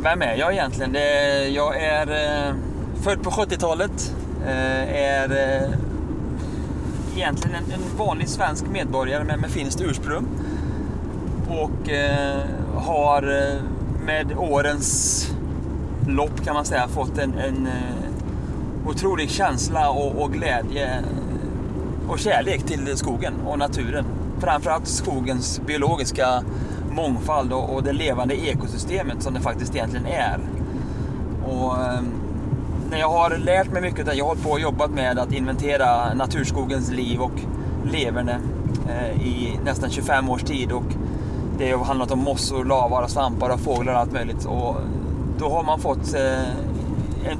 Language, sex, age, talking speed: Swedish, male, 30-49, 120 wpm